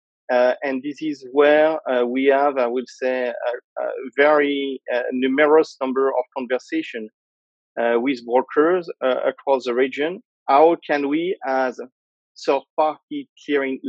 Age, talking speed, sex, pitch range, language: 40-59, 145 wpm, male, 125-150 Hz, English